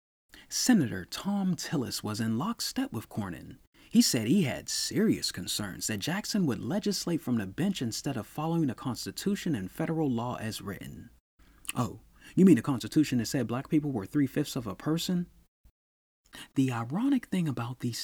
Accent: American